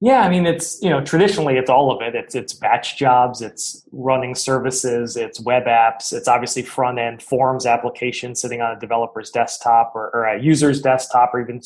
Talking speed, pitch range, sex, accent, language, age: 200 wpm, 120-150 Hz, male, American, English, 20-39